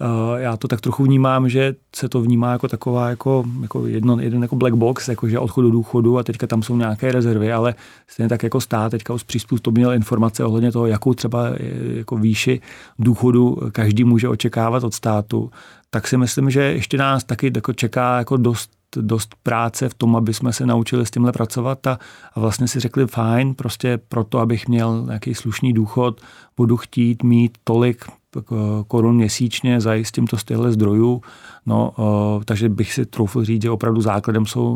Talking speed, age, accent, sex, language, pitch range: 185 wpm, 40-59, native, male, Czech, 115-125 Hz